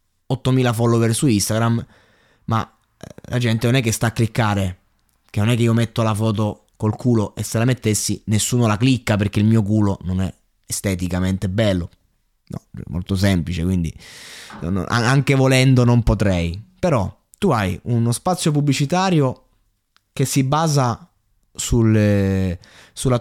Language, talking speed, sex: Italian, 145 wpm, male